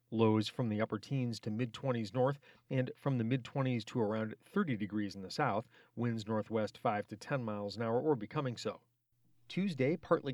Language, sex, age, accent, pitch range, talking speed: English, male, 40-59, American, 110-130 Hz, 185 wpm